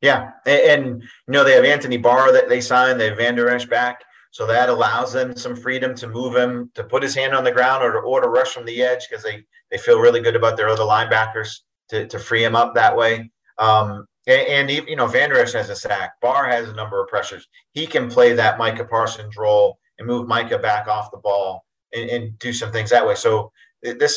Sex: male